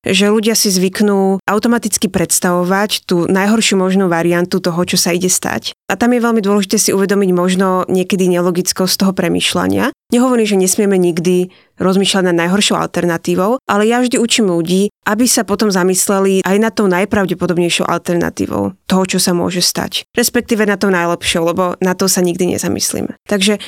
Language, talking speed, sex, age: Slovak, 165 wpm, female, 20-39